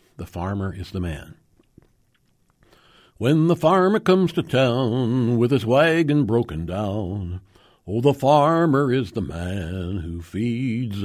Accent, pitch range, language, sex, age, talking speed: American, 105-150 Hz, English, male, 60-79, 130 wpm